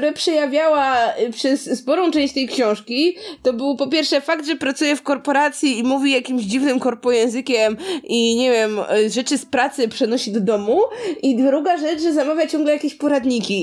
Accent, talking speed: native, 170 wpm